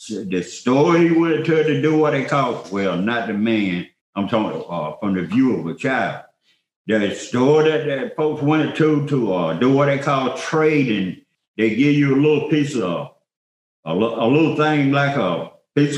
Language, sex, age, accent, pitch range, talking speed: English, male, 60-79, American, 110-150 Hz, 190 wpm